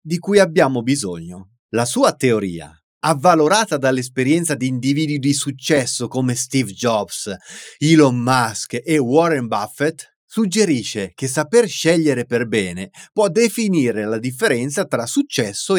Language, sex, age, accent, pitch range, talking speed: Italian, male, 30-49, native, 115-175 Hz, 125 wpm